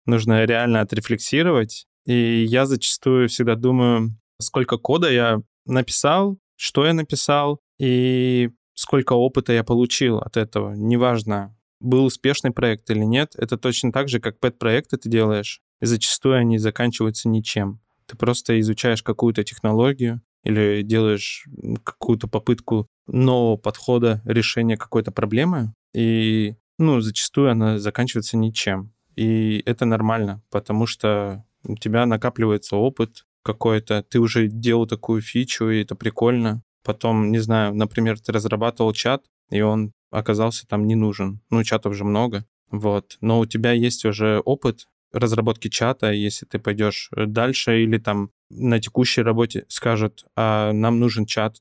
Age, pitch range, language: 20-39, 110-120 Hz, Russian